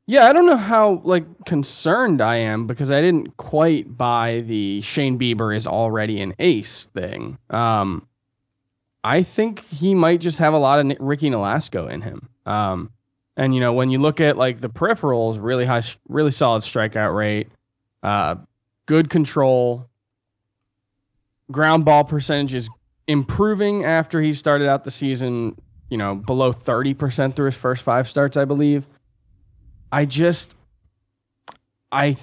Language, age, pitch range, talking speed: English, 20-39, 115-150 Hz, 150 wpm